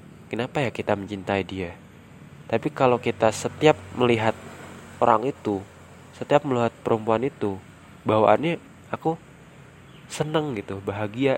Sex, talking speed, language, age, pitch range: male, 110 wpm, Indonesian, 20-39, 105-135 Hz